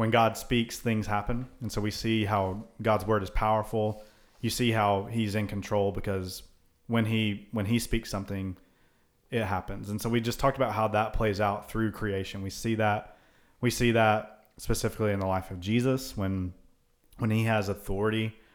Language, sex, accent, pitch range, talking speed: English, male, American, 100-115 Hz, 190 wpm